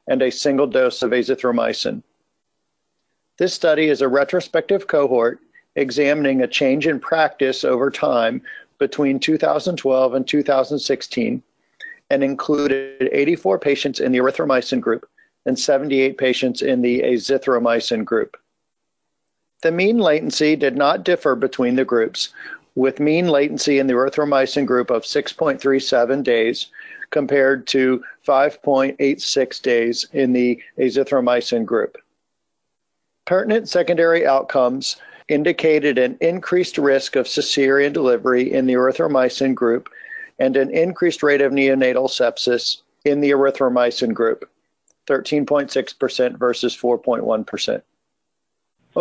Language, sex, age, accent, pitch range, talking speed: English, male, 50-69, American, 130-155 Hz, 115 wpm